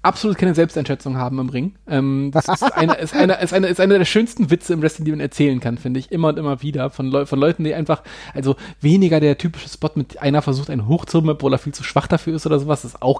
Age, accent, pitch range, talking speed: 30-49, German, 135-165 Hz, 265 wpm